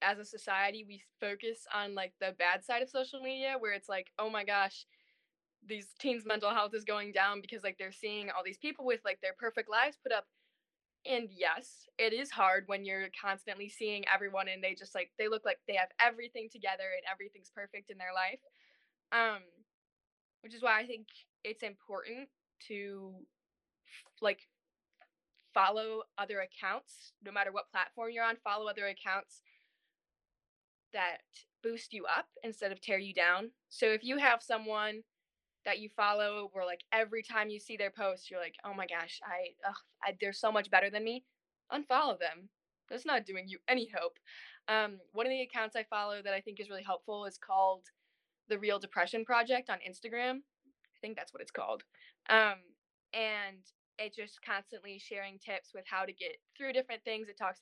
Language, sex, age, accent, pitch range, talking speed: English, female, 10-29, American, 195-230 Hz, 185 wpm